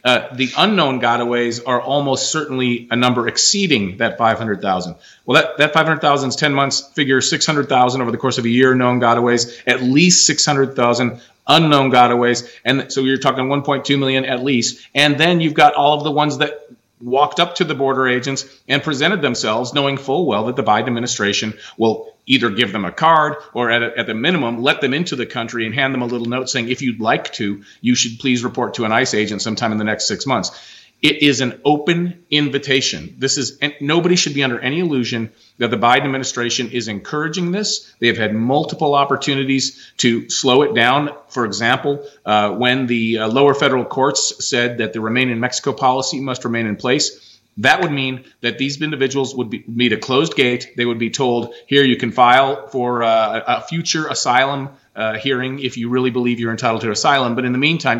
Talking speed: 205 wpm